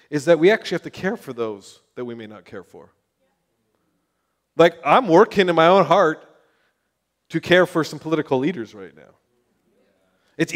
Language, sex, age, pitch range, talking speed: English, male, 30-49, 150-195 Hz, 175 wpm